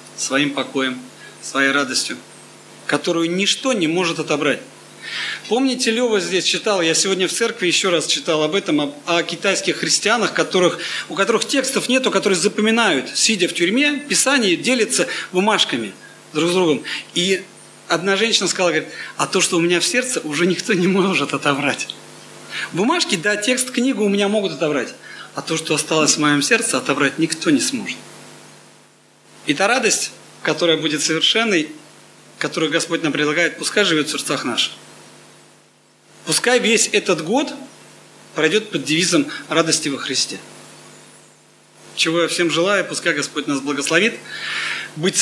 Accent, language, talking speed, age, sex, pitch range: native, Russian, 150 wpm, 40-59, male, 155-215 Hz